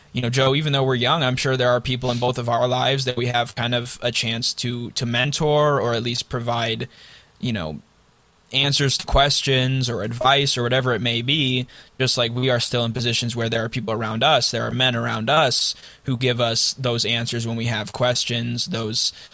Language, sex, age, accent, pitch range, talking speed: English, male, 20-39, American, 115-125 Hz, 220 wpm